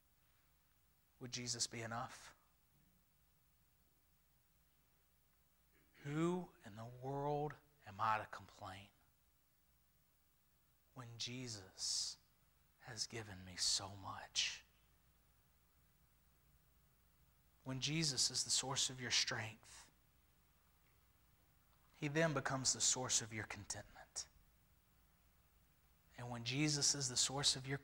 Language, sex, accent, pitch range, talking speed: English, male, American, 85-130 Hz, 95 wpm